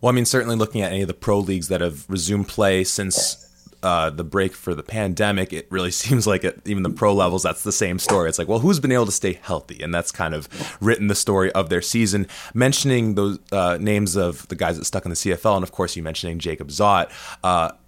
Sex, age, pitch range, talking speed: male, 20-39, 90-105 Hz, 250 wpm